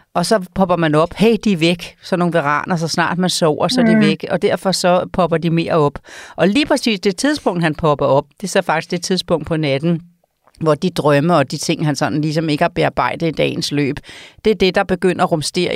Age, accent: 40-59, native